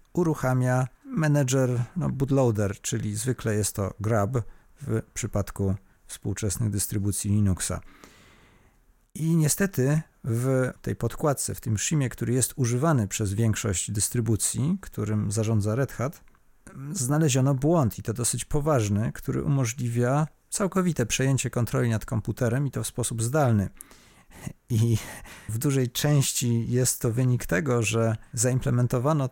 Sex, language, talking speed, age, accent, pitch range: male, Polish, 125 wpm, 40-59, native, 105-135 Hz